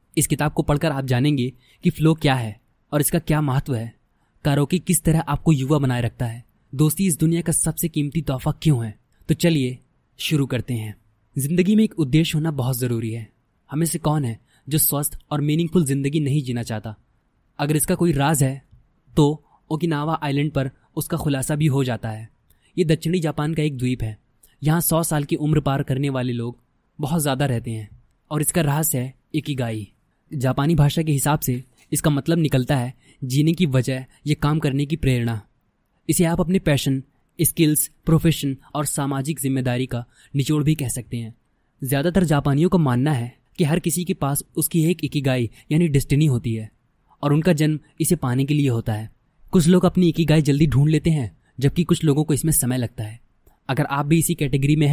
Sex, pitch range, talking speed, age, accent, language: male, 125-160 Hz, 195 wpm, 20-39, native, Hindi